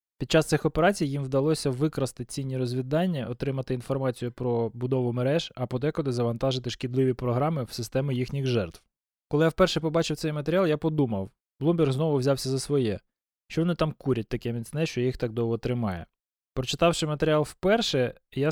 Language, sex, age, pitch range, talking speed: Ukrainian, male, 20-39, 125-155 Hz, 165 wpm